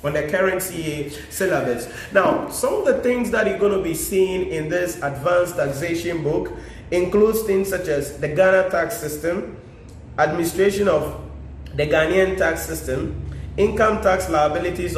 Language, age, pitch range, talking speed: English, 30-49, 150-190 Hz, 150 wpm